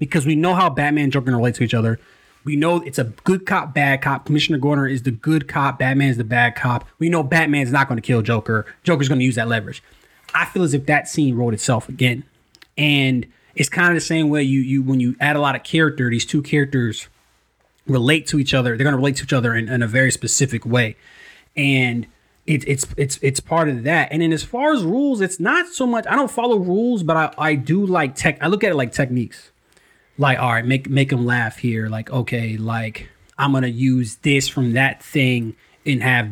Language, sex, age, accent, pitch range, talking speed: English, male, 20-39, American, 120-160 Hz, 245 wpm